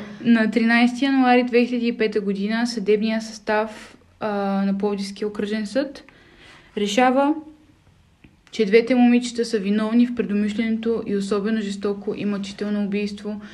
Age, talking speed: 20-39, 110 wpm